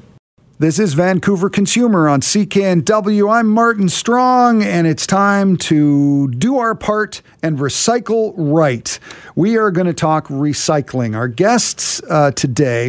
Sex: male